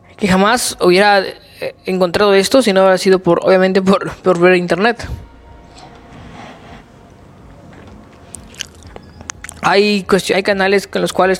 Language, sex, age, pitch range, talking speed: Spanish, female, 20-39, 165-200 Hz, 105 wpm